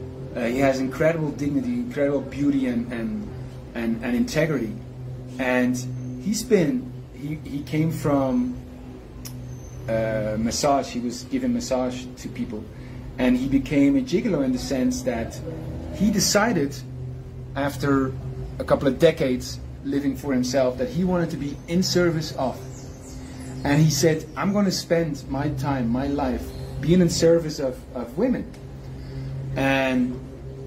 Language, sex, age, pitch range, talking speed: English, male, 30-49, 130-145 Hz, 140 wpm